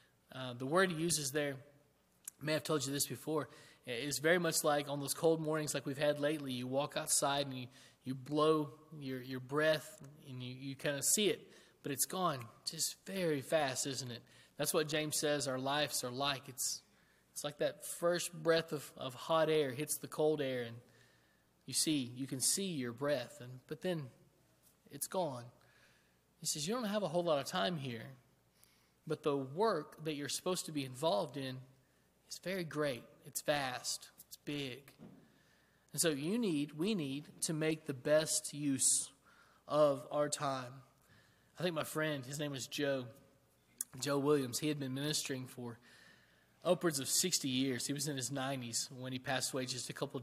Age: 20-39